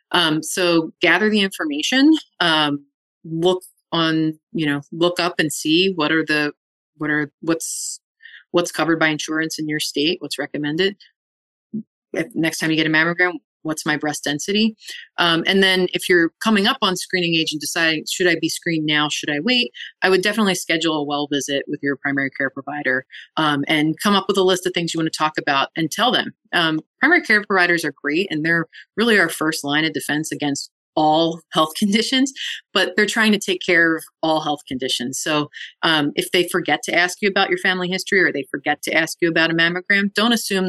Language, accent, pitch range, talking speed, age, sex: English, American, 150-185 Hz, 205 wpm, 30-49, female